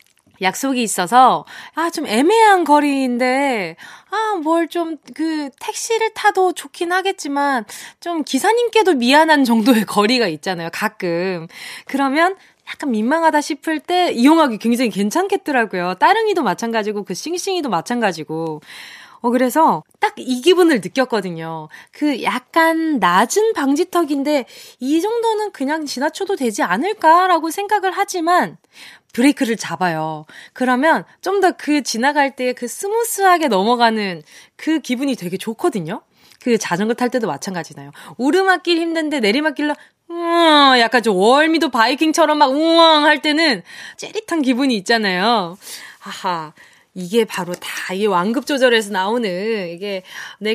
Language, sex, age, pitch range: Korean, female, 20-39, 210-330 Hz